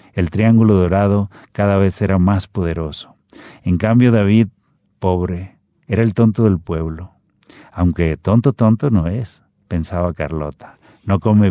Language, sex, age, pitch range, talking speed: Spanish, male, 50-69, 85-110 Hz, 135 wpm